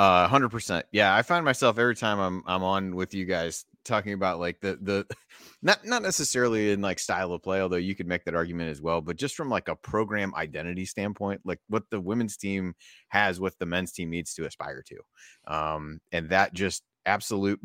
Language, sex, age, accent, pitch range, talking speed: English, male, 30-49, American, 85-100 Hz, 215 wpm